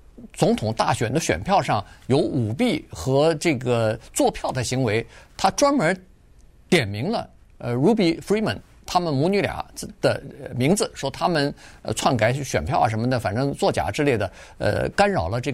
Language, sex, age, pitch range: Chinese, male, 50-69, 110-150 Hz